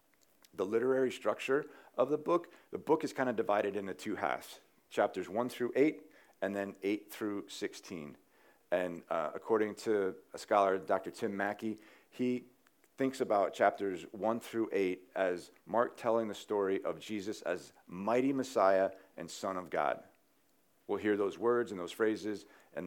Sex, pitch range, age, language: male, 95-120 Hz, 50-69, English